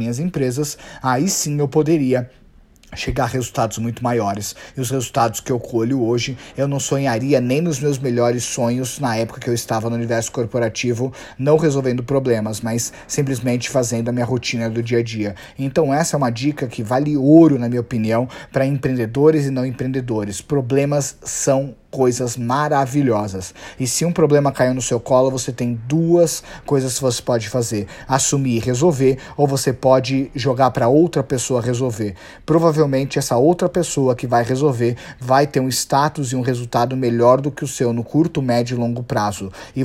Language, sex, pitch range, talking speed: Portuguese, male, 120-140 Hz, 180 wpm